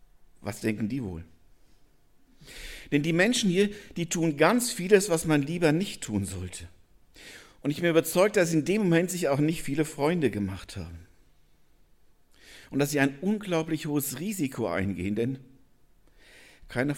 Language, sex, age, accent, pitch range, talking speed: German, male, 50-69, German, 110-165 Hz, 155 wpm